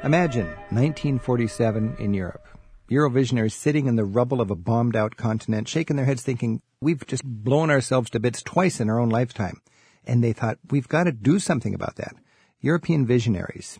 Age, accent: 50-69, American